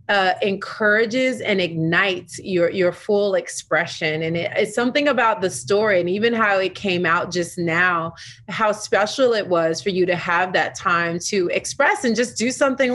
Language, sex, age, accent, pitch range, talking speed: English, female, 30-49, American, 175-215 Hz, 180 wpm